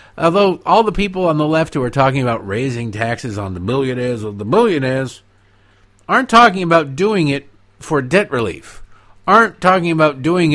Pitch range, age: 105-170 Hz, 50-69